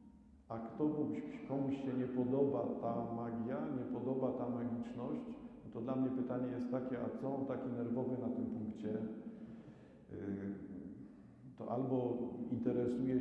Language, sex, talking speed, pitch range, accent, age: Polish, male, 125 wpm, 125-140 Hz, native, 50-69